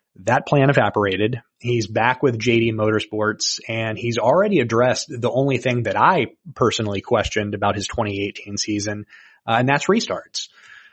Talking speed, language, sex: 150 wpm, English, male